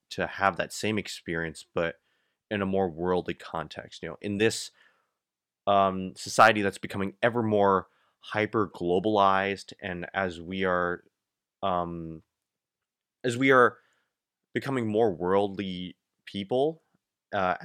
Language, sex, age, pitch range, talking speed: English, male, 20-39, 85-110 Hz, 120 wpm